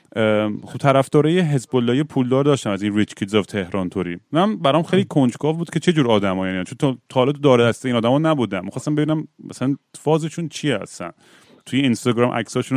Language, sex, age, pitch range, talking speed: Persian, male, 30-49, 120-155 Hz, 190 wpm